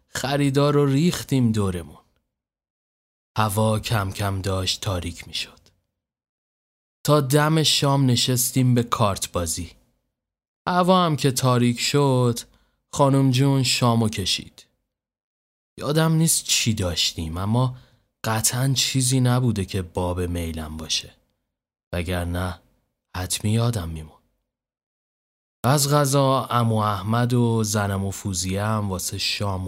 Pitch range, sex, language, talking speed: 95-130 Hz, male, Persian, 105 wpm